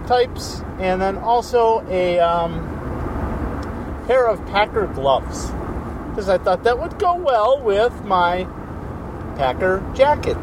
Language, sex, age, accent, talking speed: English, male, 50-69, American, 115 wpm